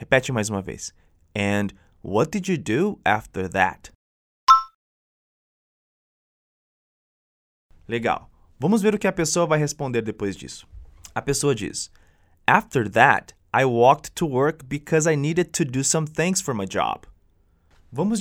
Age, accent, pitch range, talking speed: 20-39, Brazilian, 95-160 Hz, 140 wpm